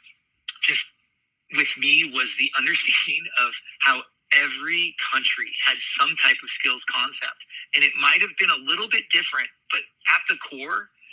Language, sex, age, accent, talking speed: English, male, 30-49, American, 155 wpm